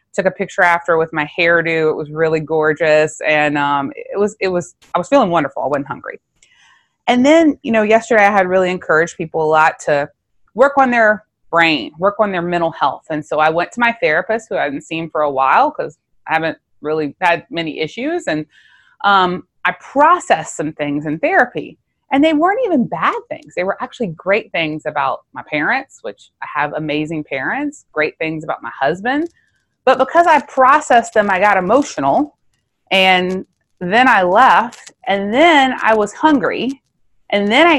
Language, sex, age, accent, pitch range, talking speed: English, female, 20-39, American, 160-260 Hz, 190 wpm